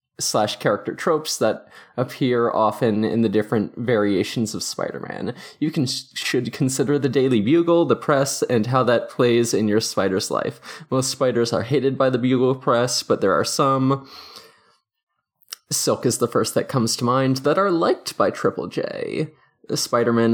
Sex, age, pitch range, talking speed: male, 20-39, 115-145 Hz, 165 wpm